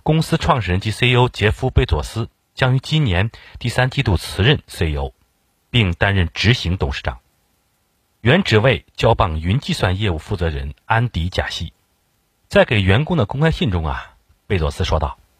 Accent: native